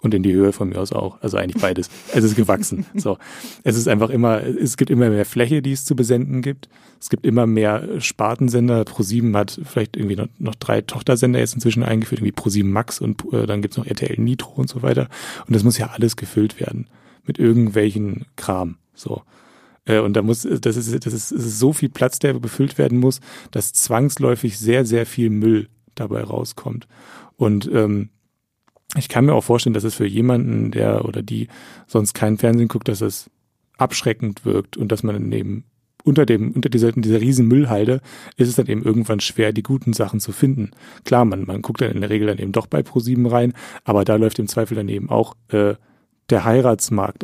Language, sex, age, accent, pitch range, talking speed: German, male, 30-49, German, 105-125 Hz, 205 wpm